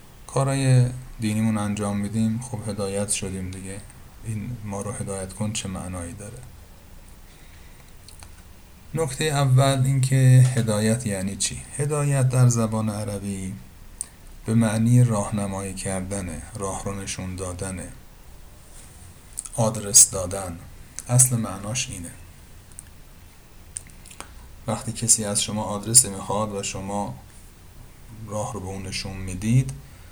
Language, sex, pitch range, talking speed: Persian, male, 95-120 Hz, 105 wpm